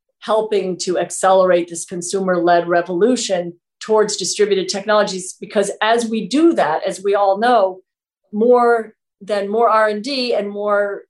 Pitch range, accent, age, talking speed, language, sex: 175-215 Hz, American, 40-59, 130 wpm, English, female